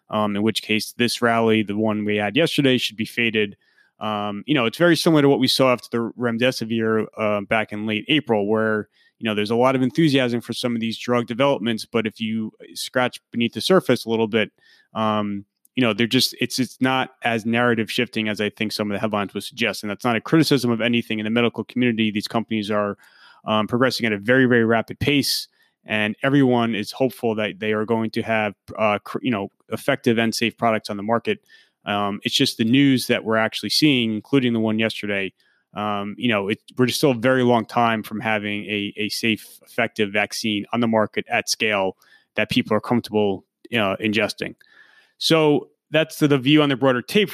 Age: 20-39